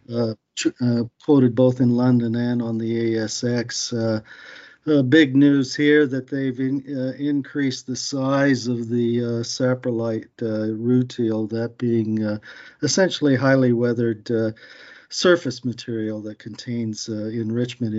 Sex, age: male, 50-69